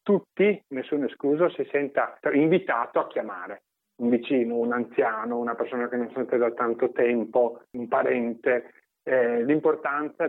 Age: 40-59